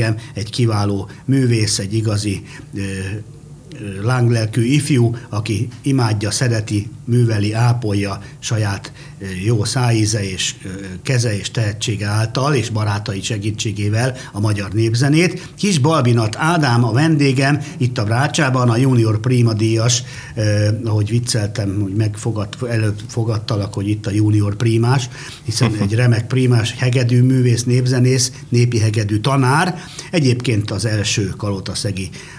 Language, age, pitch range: Hungarian, 60-79, 105-135 Hz